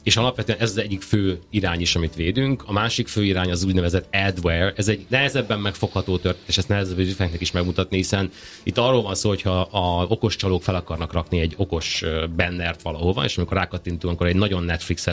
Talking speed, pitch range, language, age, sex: 200 wpm, 85-100 Hz, Hungarian, 30-49, male